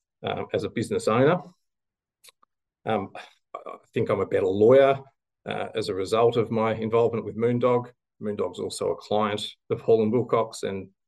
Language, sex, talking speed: English, male, 155 wpm